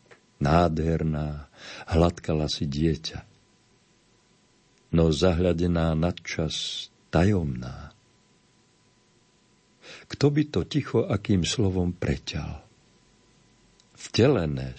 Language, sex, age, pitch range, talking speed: Slovak, male, 50-69, 80-100 Hz, 65 wpm